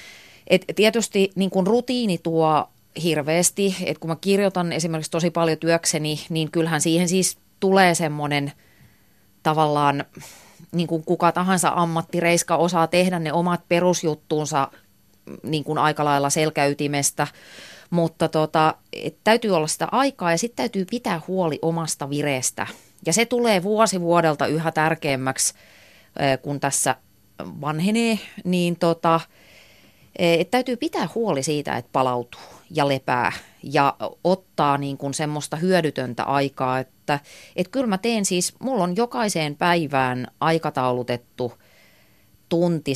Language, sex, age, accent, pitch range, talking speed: Finnish, female, 30-49, native, 135-175 Hz, 125 wpm